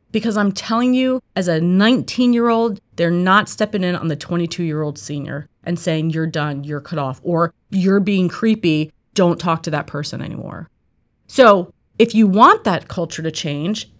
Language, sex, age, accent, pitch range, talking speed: English, female, 30-49, American, 160-220 Hz, 170 wpm